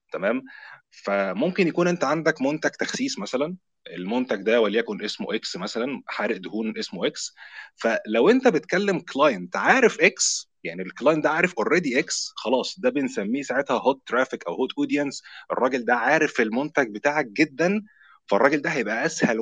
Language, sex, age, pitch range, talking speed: Arabic, male, 20-39, 140-215 Hz, 150 wpm